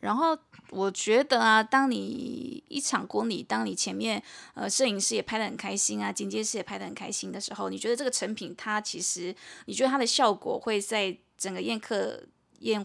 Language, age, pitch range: Chinese, 20-39, 205-250 Hz